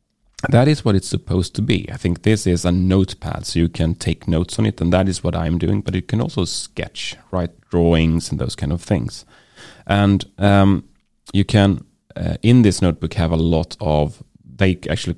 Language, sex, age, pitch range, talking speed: English, male, 30-49, 85-105 Hz, 205 wpm